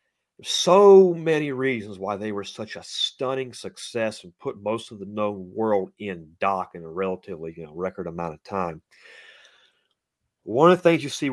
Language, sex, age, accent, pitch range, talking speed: English, male, 40-59, American, 100-120 Hz, 180 wpm